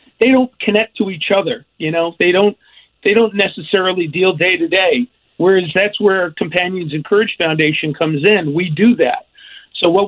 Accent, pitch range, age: American, 170-205 Hz, 50-69